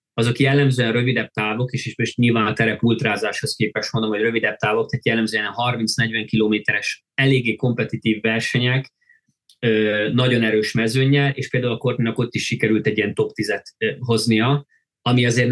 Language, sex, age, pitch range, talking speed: Hungarian, male, 20-39, 110-140 Hz, 150 wpm